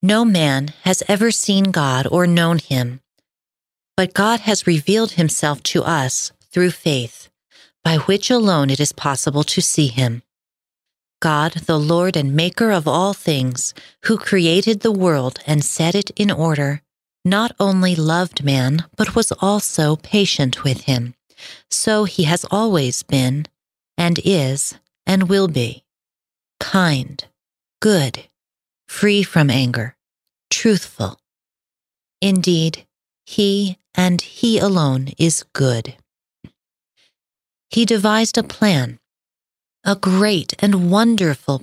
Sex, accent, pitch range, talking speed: female, American, 145-200 Hz, 125 wpm